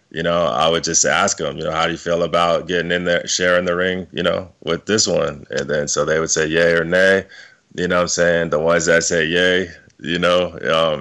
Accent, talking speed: American, 255 wpm